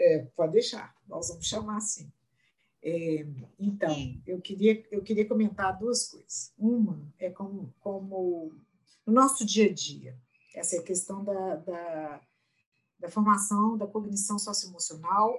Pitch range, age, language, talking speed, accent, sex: 160-215 Hz, 50-69, Portuguese, 135 wpm, Brazilian, female